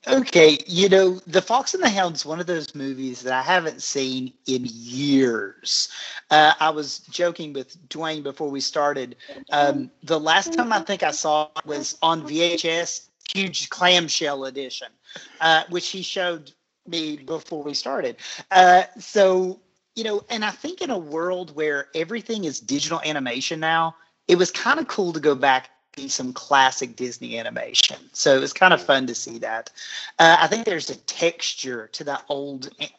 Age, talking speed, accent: 40-59, 180 wpm, American